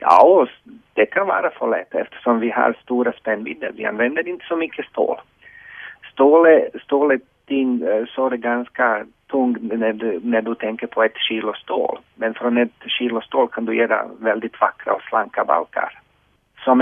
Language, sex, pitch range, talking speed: Swedish, male, 110-130 Hz, 180 wpm